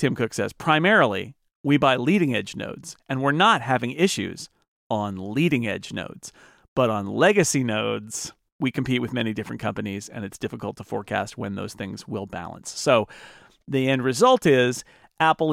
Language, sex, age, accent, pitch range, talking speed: English, male, 40-59, American, 125-175 Hz, 170 wpm